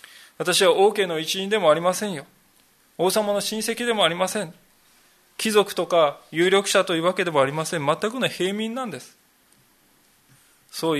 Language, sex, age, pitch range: Japanese, male, 20-39, 150-205 Hz